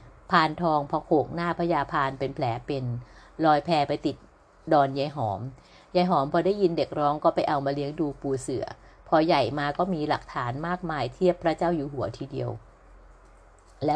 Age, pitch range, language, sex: 60-79, 135-175 Hz, Thai, female